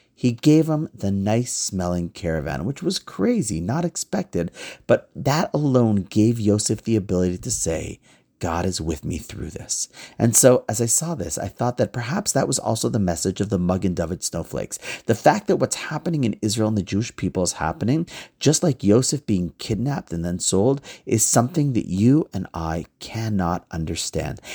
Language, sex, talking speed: English, male, 190 wpm